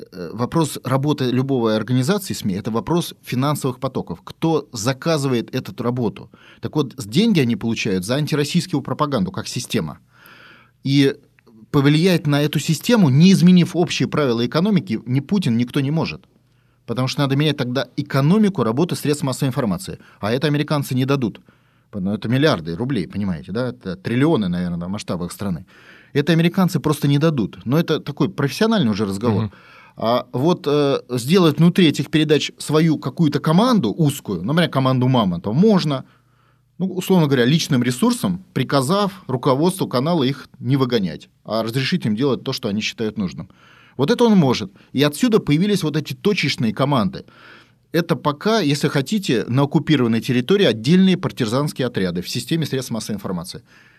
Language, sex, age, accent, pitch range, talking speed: Russian, male, 30-49, native, 125-165 Hz, 150 wpm